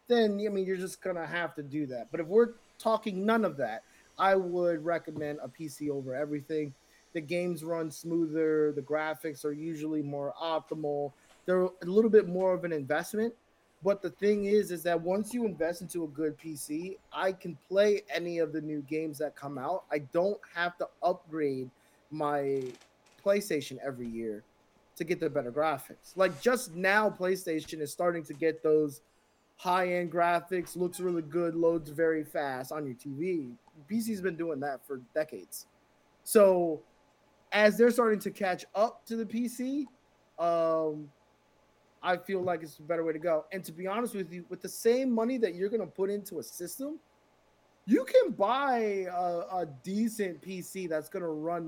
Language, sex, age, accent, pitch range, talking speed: English, male, 20-39, American, 155-195 Hz, 180 wpm